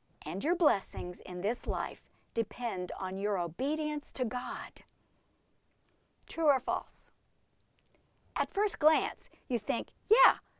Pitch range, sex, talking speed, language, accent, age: 215-310 Hz, female, 120 wpm, English, American, 50-69